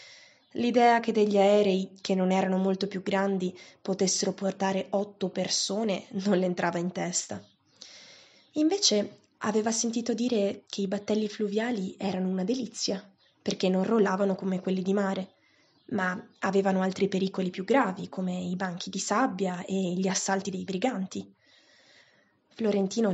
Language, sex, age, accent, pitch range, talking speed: Italian, female, 20-39, native, 190-205 Hz, 140 wpm